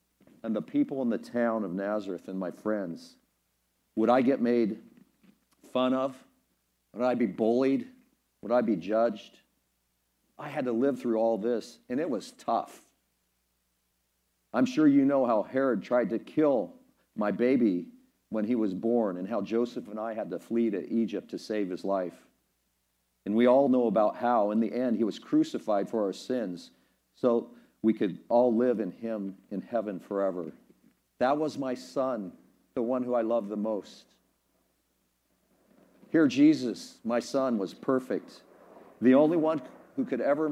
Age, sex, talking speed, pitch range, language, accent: 50-69, male, 165 wpm, 100-135 Hz, English, American